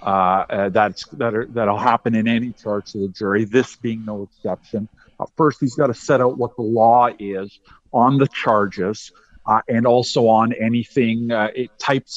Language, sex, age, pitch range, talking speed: English, male, 50-69, 115-135 Hz, 180 wpm